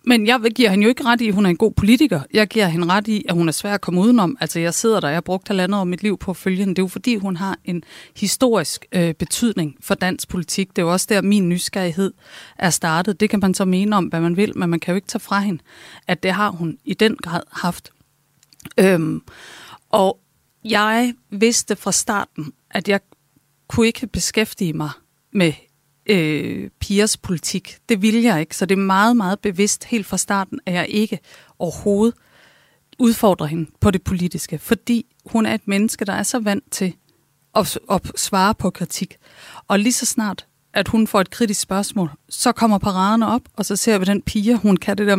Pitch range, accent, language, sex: 180-220 Hz, native, Danish, female